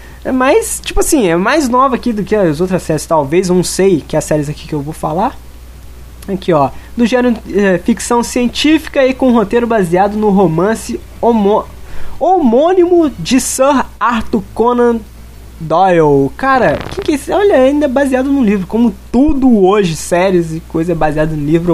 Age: 20-39